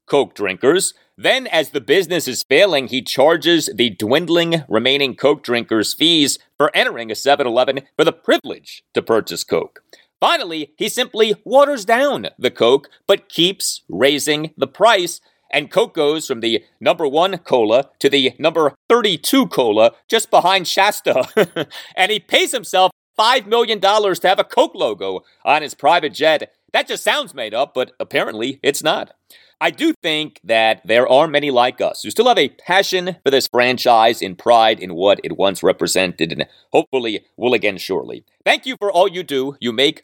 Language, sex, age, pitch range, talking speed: English, male, 40-59, 130-210 Hz, 170 wpm